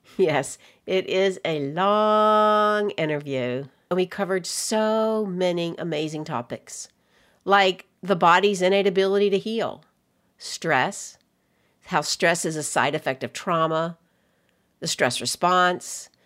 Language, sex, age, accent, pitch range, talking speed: English, female, 50-69, American, 165-220 Hz, 120 wpm